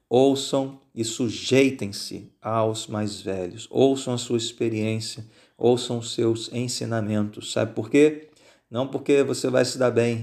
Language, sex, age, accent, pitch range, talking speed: Portuguese, male, 40-59, Brazilian, 110-130 Hz, 140 wpm